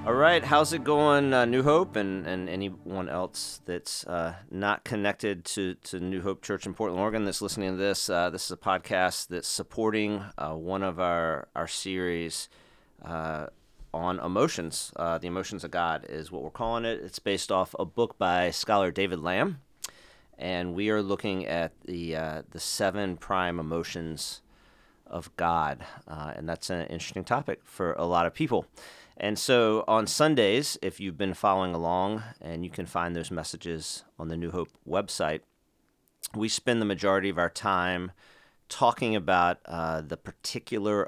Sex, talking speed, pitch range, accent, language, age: male, 170 wpm, 85-105 Hz, American, English, 30-49